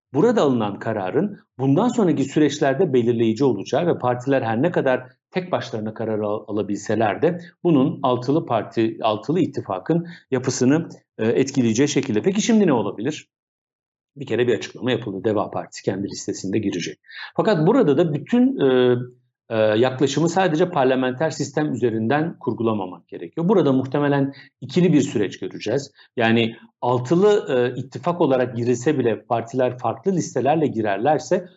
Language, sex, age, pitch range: Turkish, male, 50-69, 115-160 Hz